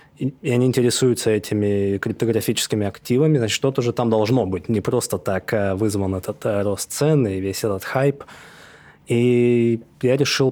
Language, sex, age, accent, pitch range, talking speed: Russian, male, 20-39, native, 105-130 Hz, 150 wpm